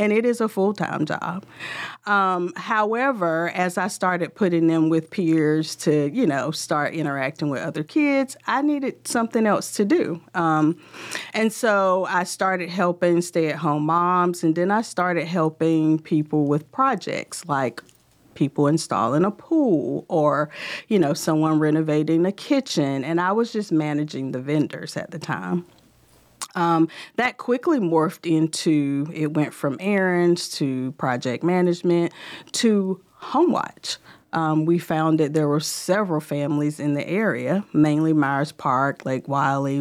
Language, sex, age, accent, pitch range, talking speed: English, female, 40-59, American, 150-200 Hz, 150 wpm